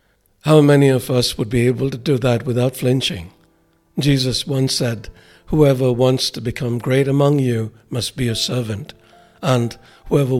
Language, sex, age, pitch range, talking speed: English, male, 60-79, 120-145 Hz, 160 wpm